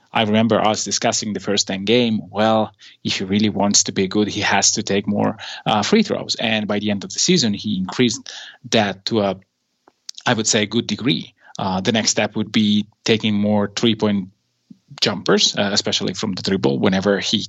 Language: English